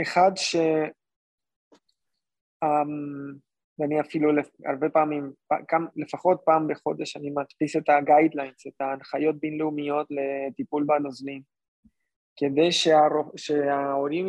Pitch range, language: 145-170 Hz, Hebrew